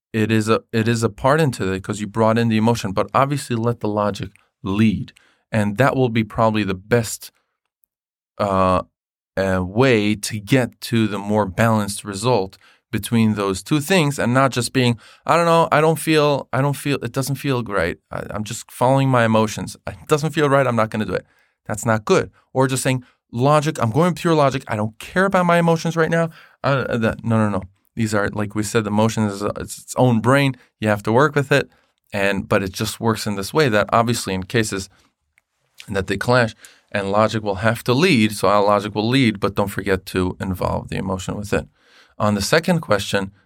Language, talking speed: English, 210 wpm